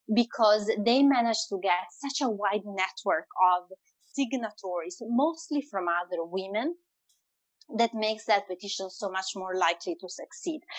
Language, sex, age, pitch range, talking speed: Spanish, female, 30-49, 195-265 Hz, 140 wpm